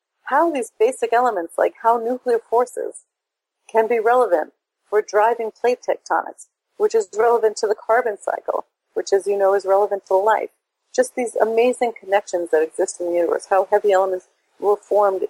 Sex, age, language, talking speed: female, 40-59, English, 175 wpm